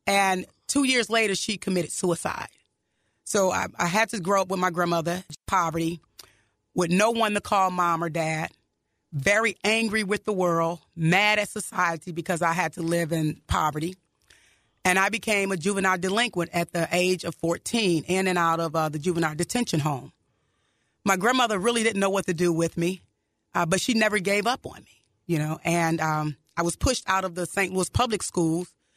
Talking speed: 195 wpm